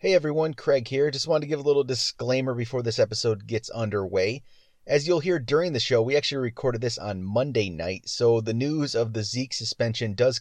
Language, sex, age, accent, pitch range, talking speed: English, male, 30-49, American, 100-120 Hz, 215 wpm